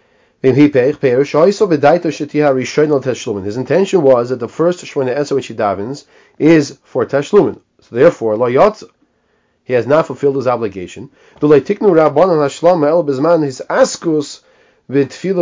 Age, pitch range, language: 30-49, 130-155 Hz, English